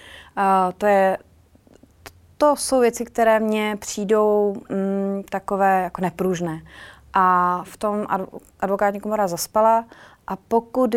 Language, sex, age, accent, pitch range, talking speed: Czech, female, 20-39, native, 175-200 Hz, 115 wpm